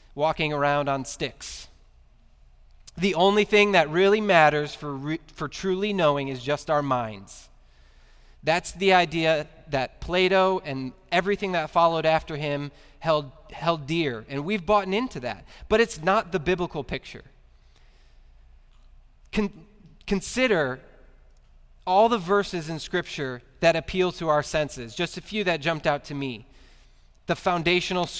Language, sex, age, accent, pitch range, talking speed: English, male, 20-39, American, 130-180 Hz, 140 wpm